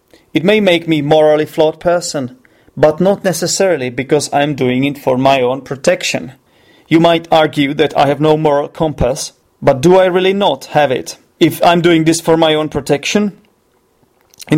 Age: 30-49